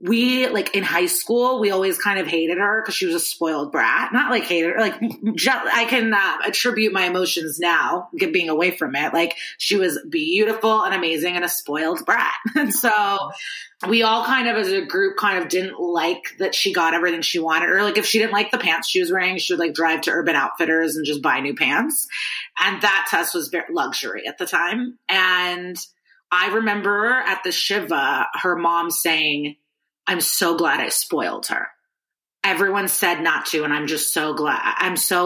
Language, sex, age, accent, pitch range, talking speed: English, female, 30-49, American, 170-225 Hz, 205 wpm